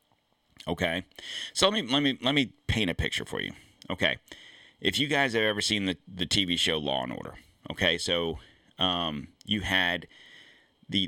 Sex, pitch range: male, 85-110 Hz